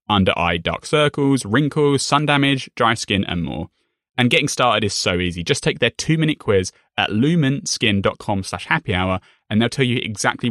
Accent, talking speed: British, 190 wpm